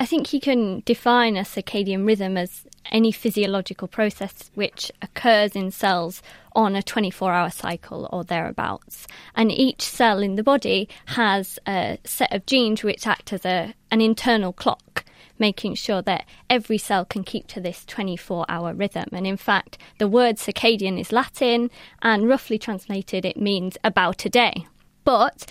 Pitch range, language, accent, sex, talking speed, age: 195-235 Hz, English, British, female, 160 wpm, 20-39